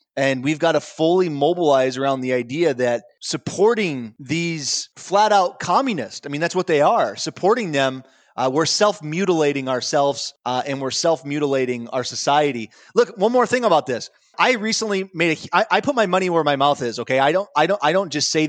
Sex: male